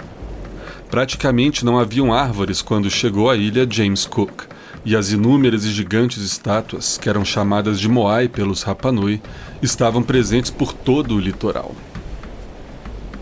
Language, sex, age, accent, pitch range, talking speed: Portuguese, male, 40-59, Brazilian, 105-125 Hz, 130 wpm